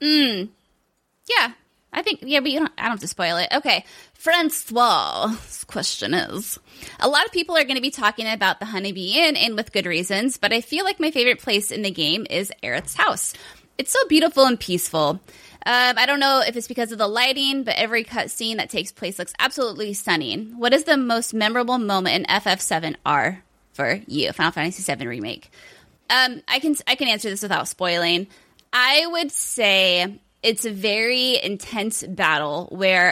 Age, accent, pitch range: 20-39, American, 190-245 Hz